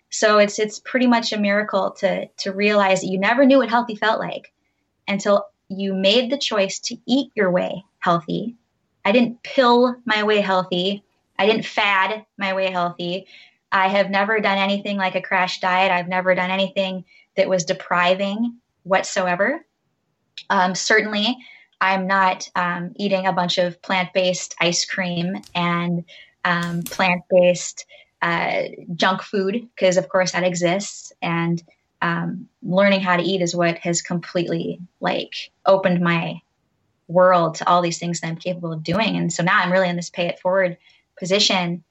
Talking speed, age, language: 165 wpm, 20-39, English